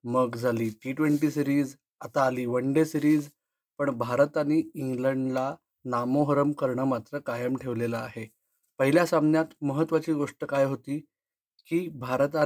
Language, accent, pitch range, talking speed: Marathi, native, 130-165 Hz, 50 wpm